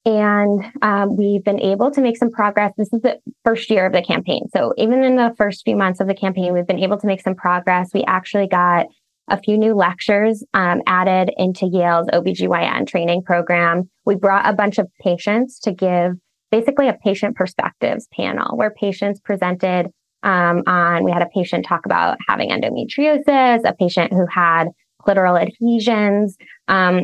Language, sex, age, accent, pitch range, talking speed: English, female, 20-39, American, 180-210 Hz, 180 wpm